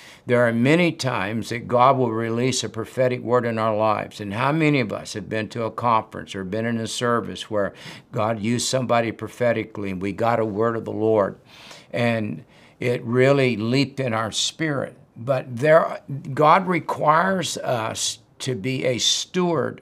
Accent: American